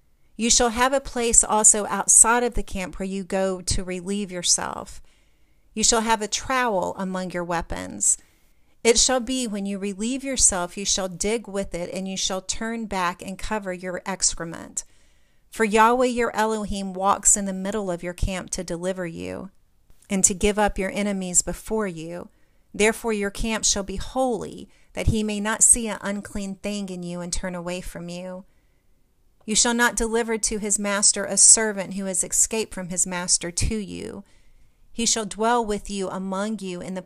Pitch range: 185-220 Hz